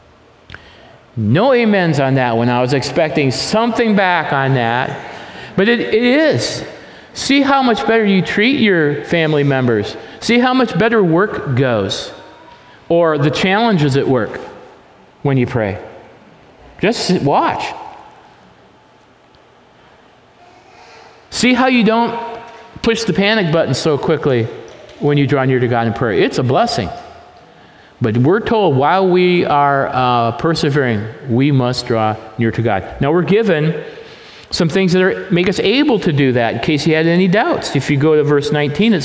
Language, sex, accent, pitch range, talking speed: English, male, American, 140-205 Hz, 155 wpm